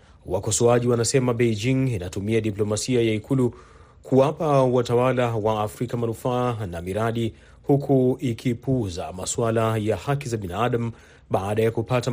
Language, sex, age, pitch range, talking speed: Swahili, male, 30-49, 105-125 Hz, 120 wpm